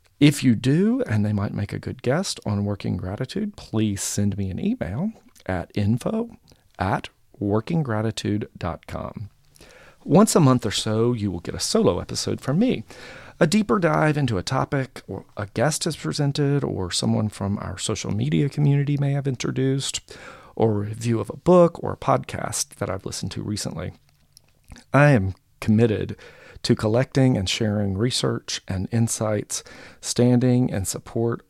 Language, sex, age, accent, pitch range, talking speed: English, male, 40-59, American, 100-135 Hz, 160 wpm